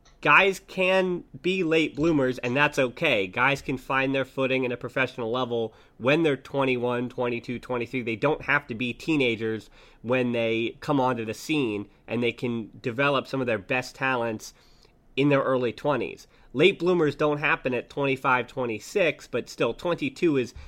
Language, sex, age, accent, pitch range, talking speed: English, male, 30-49, American, 125-150 Hz, 170 wpm